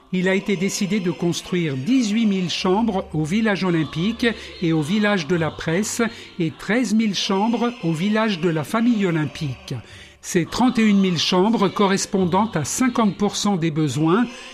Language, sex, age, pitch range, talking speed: French, male, 60-79, 170-215 Hz, 155 wpm